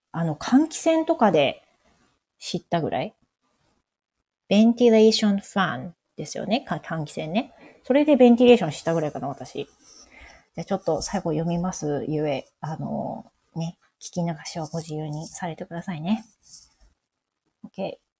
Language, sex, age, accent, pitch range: Japanese, female, 30-49, native, 175-215 Hz